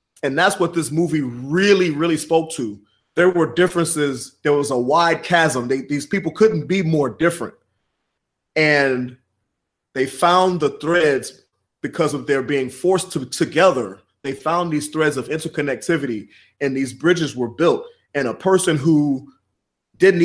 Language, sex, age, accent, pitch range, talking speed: English, male, 30-49, American, 135-175 Hz, 150 wpm